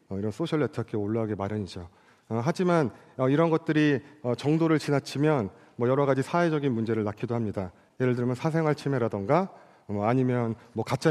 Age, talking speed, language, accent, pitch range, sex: 40-59, 155 wpm, English, Korean, 110-155 Hz, male